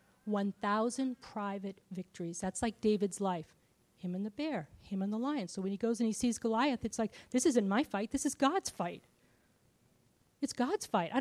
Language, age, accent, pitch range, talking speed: English, 40-59, American, 190-230 Hz, 200 wpm